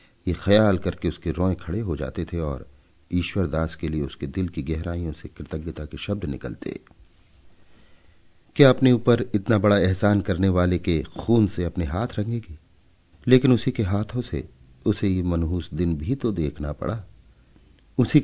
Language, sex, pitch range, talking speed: Hindi, male, 80-105 Hz, 160 wpm